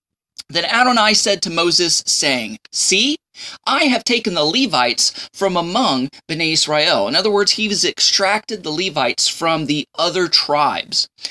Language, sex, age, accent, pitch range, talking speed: English, male, 20-39, American, 145-200 Hz, 150 wpm